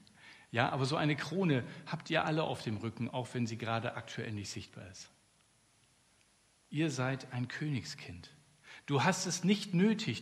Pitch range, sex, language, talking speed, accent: 110-150 Hz, male, German, 165 wpm, German